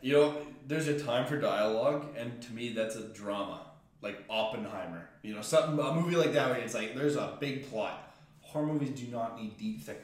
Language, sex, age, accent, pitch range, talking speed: English, male, 20-39, American, 115-150 Hz, 215 wpm